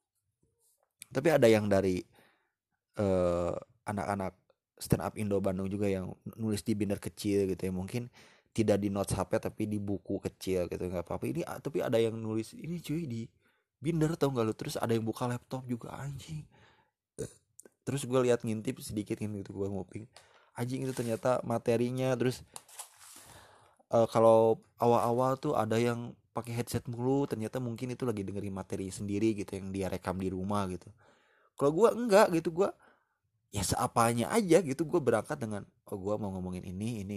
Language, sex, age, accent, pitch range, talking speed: English, male, 20-39, Indonesian, 100-125 Hz, 165 wpm